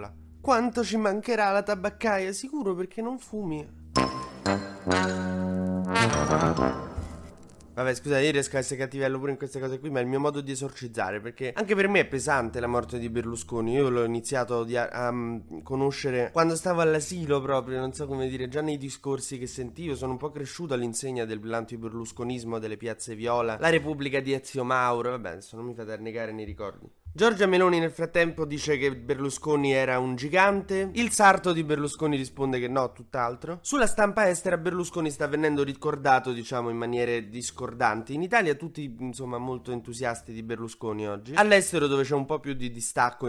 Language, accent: Italian, native